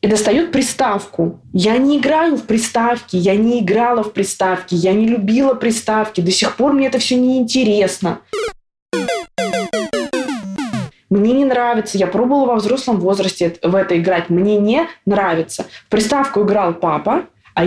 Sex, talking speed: female, 145 wpm